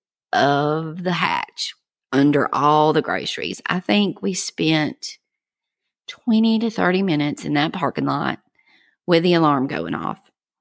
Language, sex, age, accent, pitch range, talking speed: English, female, 40-59, American, 150-190 Hz, 135 wpm